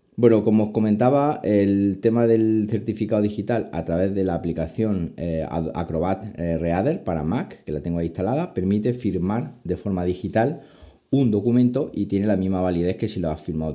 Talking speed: 180 wpm